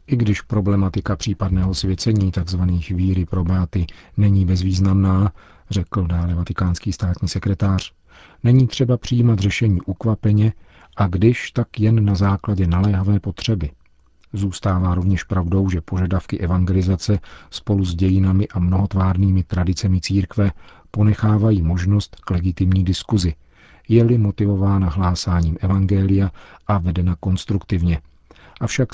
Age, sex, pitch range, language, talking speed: 40-59, male, 90-100 Hz, Czech, 110 wpm